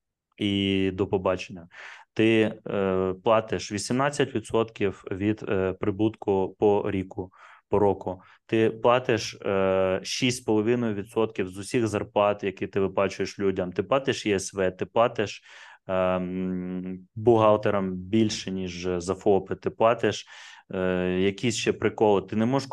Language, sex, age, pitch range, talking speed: Ukrainian, male, 20-39, 95-110 Hz, 120 wpm